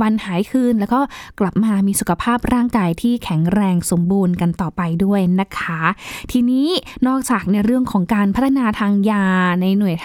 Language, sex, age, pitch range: Thai, female, 10-29, 205-260 Hz